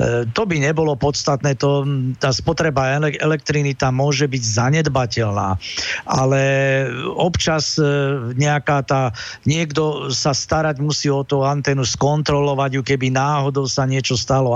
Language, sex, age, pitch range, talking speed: Slovak, male, 50-69, 130-155 Hz, 125 wpm